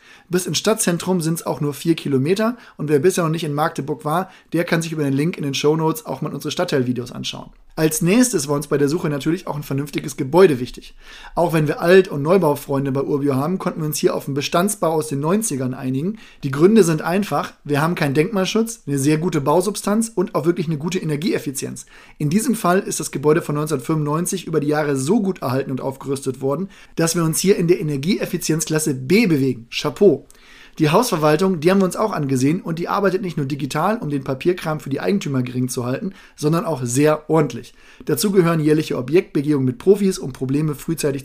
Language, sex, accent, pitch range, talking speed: German, male, German, 140-180 Hz, 210 wpm